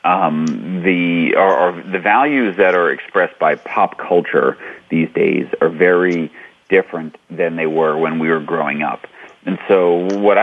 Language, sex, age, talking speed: English, male, 40-59, 160 wpm